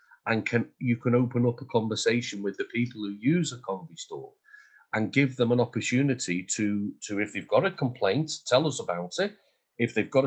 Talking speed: 200 wpm